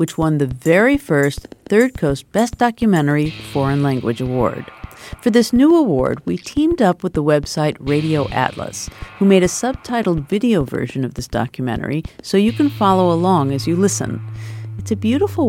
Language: English